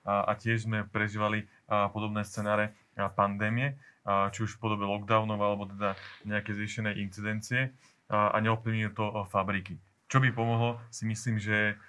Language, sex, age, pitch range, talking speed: Slovak, male, 30-49, 105-115 Hz, 135 wpm